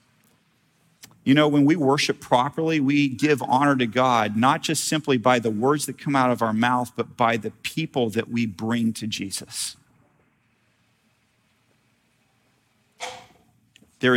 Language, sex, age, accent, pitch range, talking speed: English, male, 40-59, American, 115-140 Hz, 140 wpm